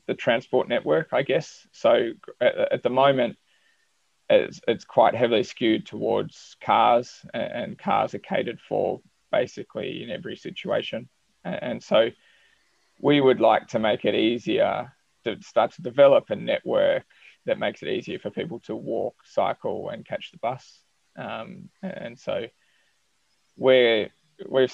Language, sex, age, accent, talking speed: English, male, 20-39, Australian, 140 wpm